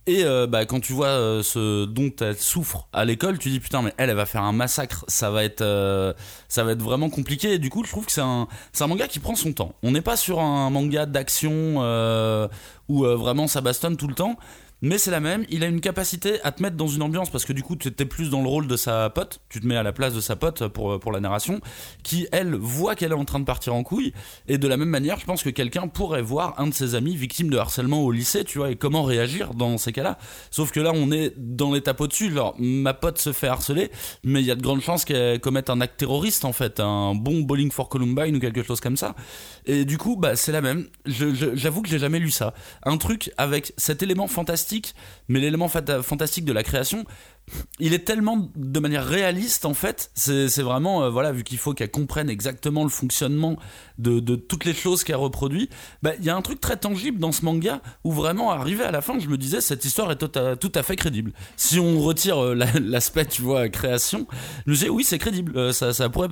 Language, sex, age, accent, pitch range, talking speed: French, male, 20-39, French, 125-165 Hz, 255 wpm